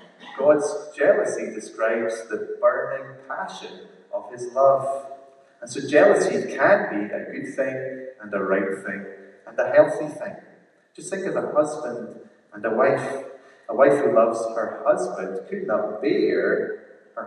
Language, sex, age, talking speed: English, male, 30-49, 150 wpm